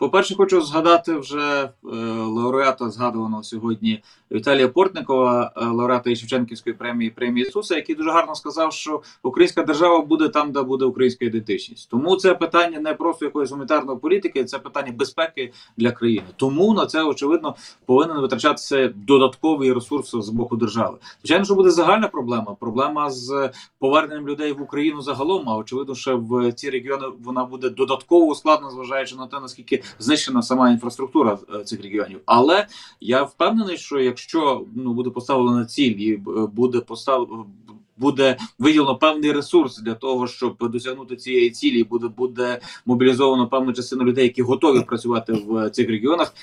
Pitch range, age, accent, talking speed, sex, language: 120-165 Hz, 30-49, native, 150 wpm, male, Ukrainian